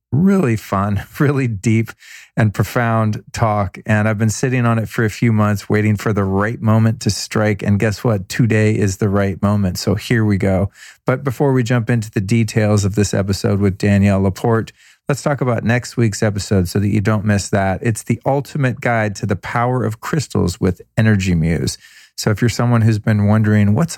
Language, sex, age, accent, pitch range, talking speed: English, male, 40-59, American, 100-115 Hz, 205 wpm